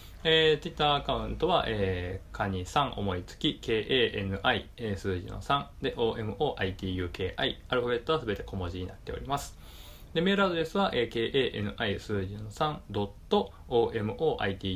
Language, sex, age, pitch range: Japanese, male, 20-39, 95-150 Hz